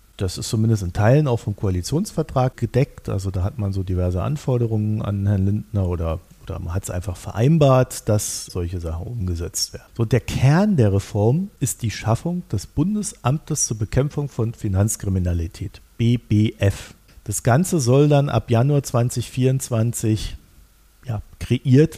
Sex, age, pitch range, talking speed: male, 50-69, 95-125 Hz, 145 wpm